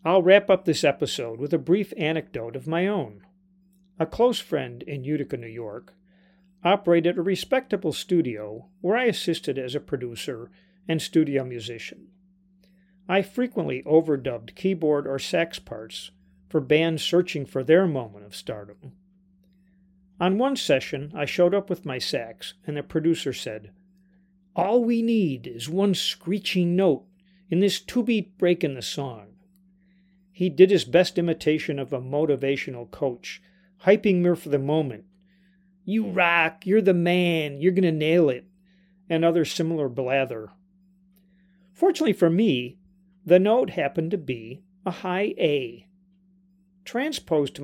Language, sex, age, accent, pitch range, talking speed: English, male, 50-69, American, 145-190 Hz, 145 wpm